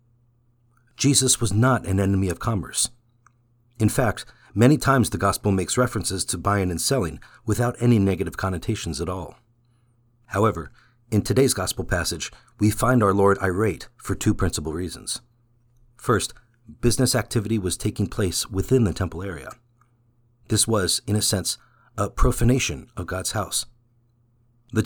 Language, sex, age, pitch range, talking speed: English, male, 50-69, 100-120 Hz, 145 wpm